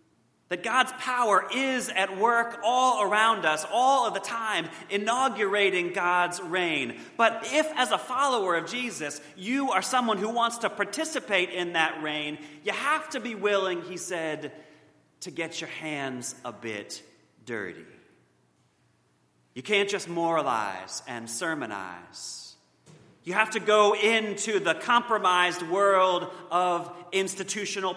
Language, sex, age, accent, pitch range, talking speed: English, male, 30-49, American, 140-220 Hz, 135 wpm